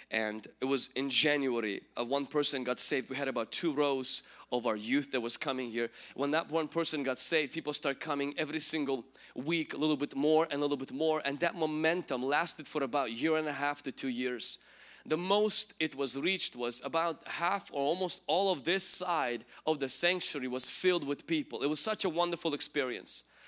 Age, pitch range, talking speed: 20-39, 140-185 Hz, 215 wpm